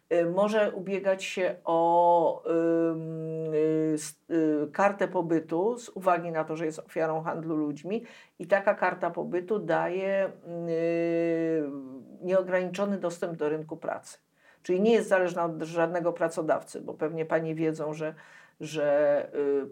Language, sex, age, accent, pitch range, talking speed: Polish, female, 50-69, native, 160-195 Hz, 130 wpm